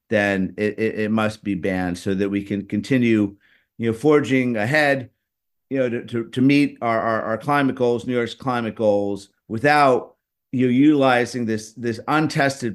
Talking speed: 180 wpm